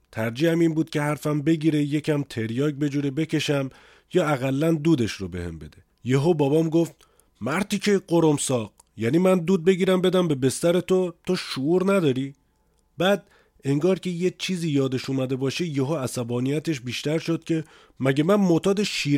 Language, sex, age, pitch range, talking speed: Persian, male, 30-49, 115-155 Hz, 165 wpm